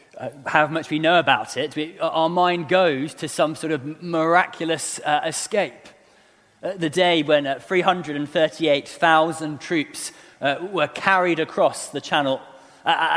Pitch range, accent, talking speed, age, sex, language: 140-180 Hz, British, 140 wpm, 30-49, male, English